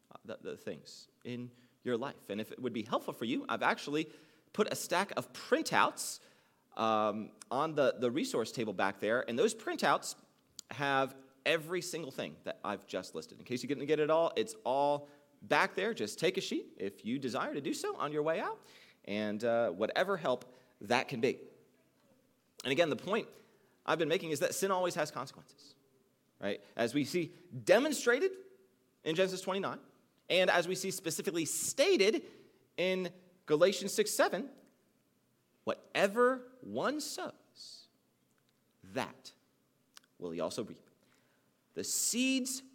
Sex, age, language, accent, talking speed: male, 30-49, English, American, 155 wpm